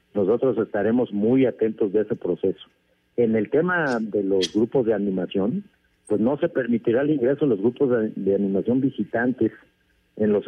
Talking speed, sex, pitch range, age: 165 wpm, male, 100-130 Hz, 50-69